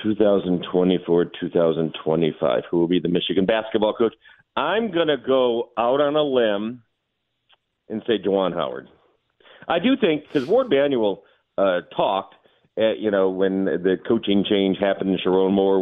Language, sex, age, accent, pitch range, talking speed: English, male, 50-69, American, 95-120 Hz, 140 wpm